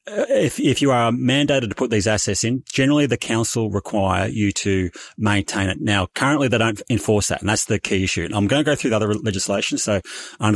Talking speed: 235 wpm